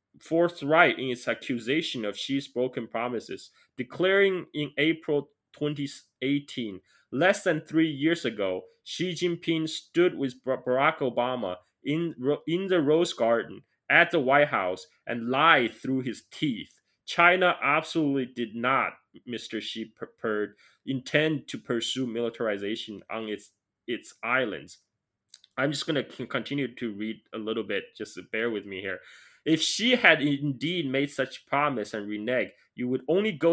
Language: English